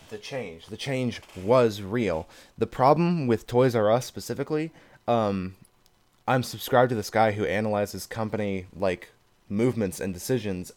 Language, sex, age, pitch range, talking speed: English, male, 20-39, 100-125 Hz, 145 wpm